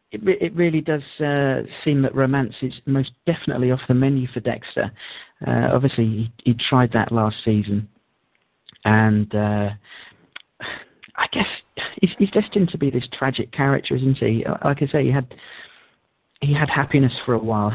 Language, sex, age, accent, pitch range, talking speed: English, male, 40-59, British, 115-140 Hz, 160 wpm